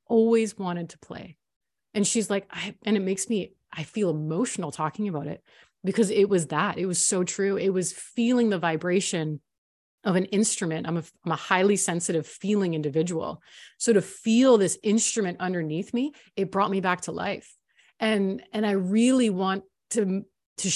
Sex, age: female, 30-49